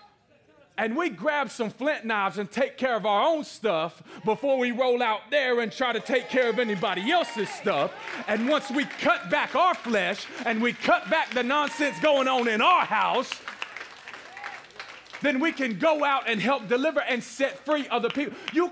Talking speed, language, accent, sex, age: 190 wpm, English, American, male, 40-59